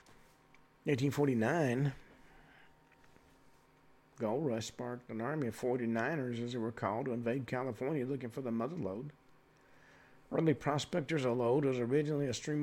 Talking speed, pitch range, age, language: 145 wpm, 125-145 Hz, 50-69, English